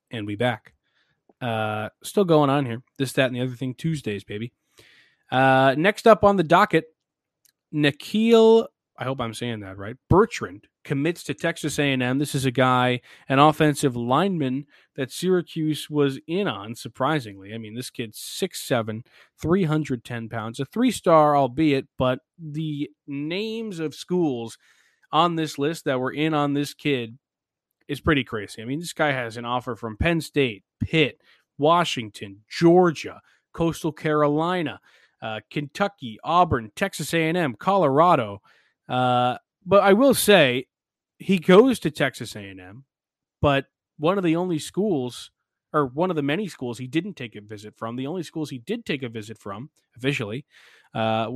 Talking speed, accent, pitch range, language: 155 wpm, American, 125-165 Hz, English